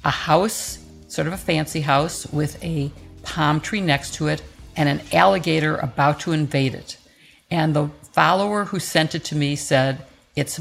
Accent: American